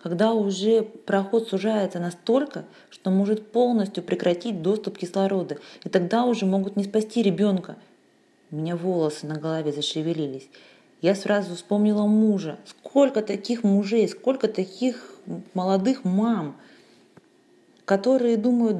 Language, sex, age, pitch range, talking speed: Russian, female, 20-39, 180-220 Hz, 120 wpm